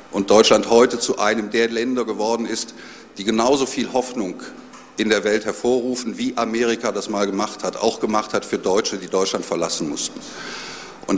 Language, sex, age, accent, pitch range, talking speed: German, male, 50-69, German, 115-145 Hz, 175 wpm